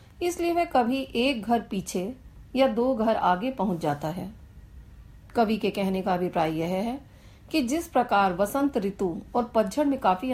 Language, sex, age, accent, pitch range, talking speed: Hindi, female, 40-59, native, 185-255 Hz, 170 wpm